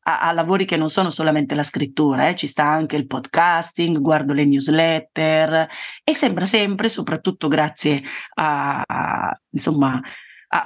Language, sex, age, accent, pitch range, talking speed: Italian, female, 30-49, native, 155-200 Hz, 150 wpm